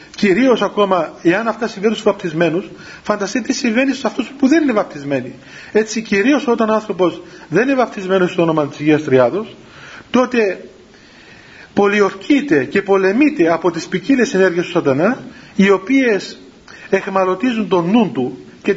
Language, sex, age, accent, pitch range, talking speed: Greek, male, 40-59, native, 175-245 Hz, 145 wpm